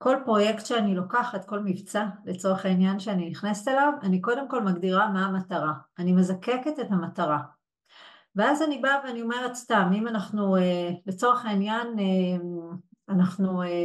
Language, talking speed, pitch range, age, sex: Hebrew, 140 wpm, 175-225 Hz, 40-59, female